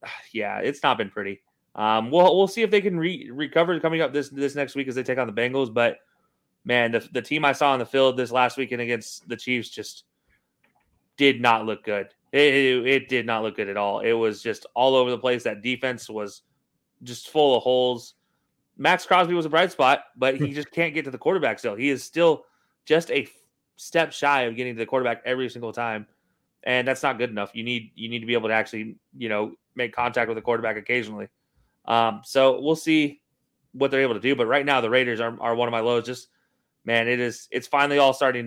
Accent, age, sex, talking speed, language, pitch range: American, 20-39, male, 235 wpm, English, 115-140 Hz